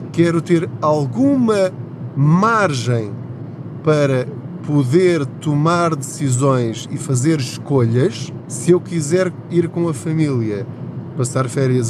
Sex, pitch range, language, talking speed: male, 125-150 Hz, Portuguese, 100 wpm